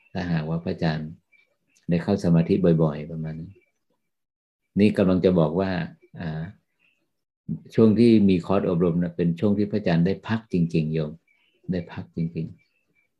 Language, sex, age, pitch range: Thai, male, 50-69, 80-95 Hz